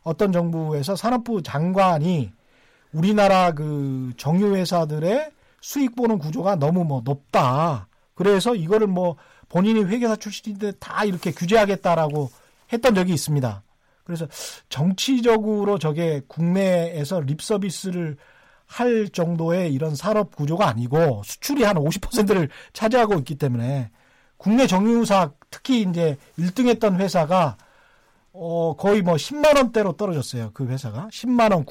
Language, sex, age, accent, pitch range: Korean, male, 40-59, native, 145-220 Hz